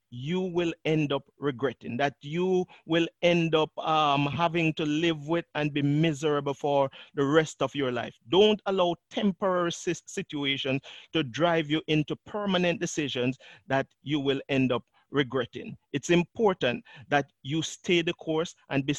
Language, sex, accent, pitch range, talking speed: English, male, Nigerian, 160-235 Hz, 155 wpm